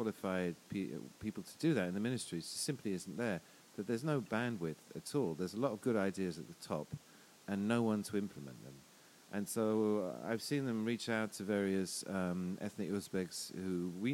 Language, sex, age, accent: English, male, 40-59, British